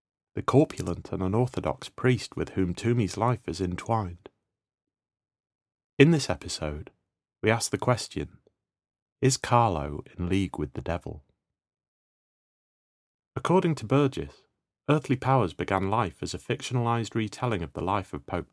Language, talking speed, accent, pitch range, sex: English, 135 wpm, British, 90-120 Hz, male